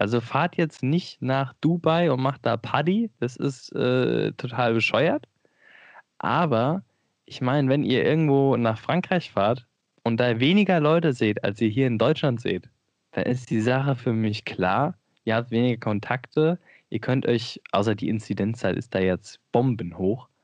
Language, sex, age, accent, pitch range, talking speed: German, male, 10-29, German, 110-135 Hz, 165 wpm